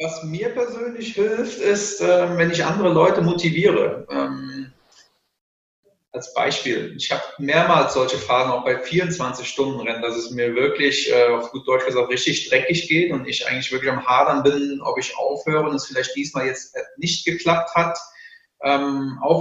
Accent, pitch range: German, 140-175 Hz